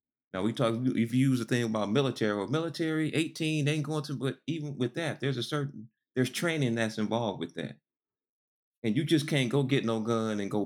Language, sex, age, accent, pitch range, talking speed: English, male, 30-49, American, 110-140 Hz, 225 wpm